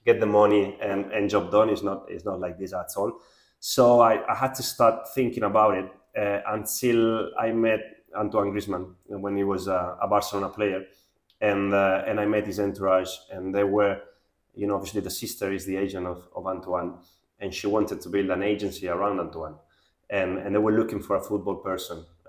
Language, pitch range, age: English, 95-110 Hz, 20-39